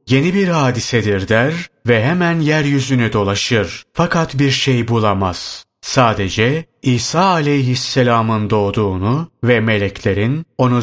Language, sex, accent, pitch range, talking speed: Turkish, male, native, 110-140 Hz, 105 wpm